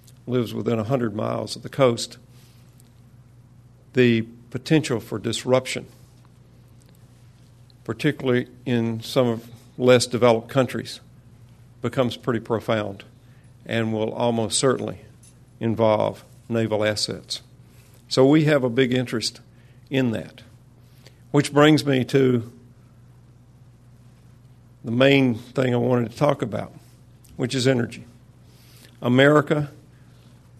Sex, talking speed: male, 100 wpm